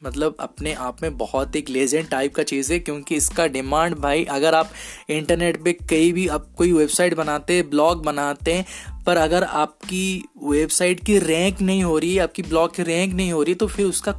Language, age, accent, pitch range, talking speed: Hindi, 20-39, native, 150-185 Hz, 205 wpm